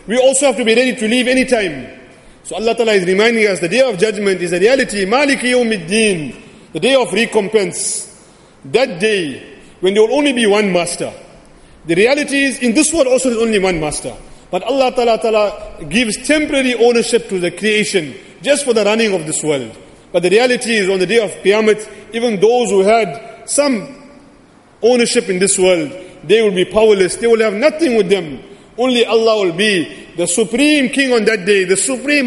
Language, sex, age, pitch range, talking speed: English, male, 40-59, 195-255 Hz, 195 wpm